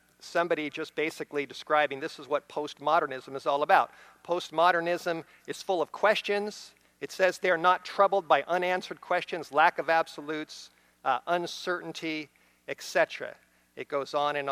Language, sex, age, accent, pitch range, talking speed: English, male, 50-69, American, 140-195 Hz, 140 wpm